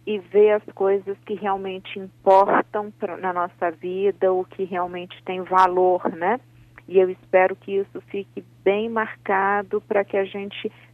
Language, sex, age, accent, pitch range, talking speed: Portuguese, female, 40-59, Brazilian, 170-200 Hz, 160 wpm